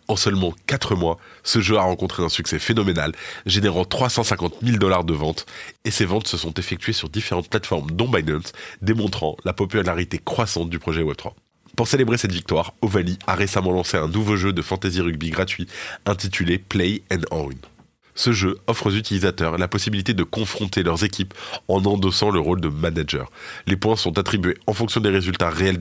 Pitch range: 85-105 Hz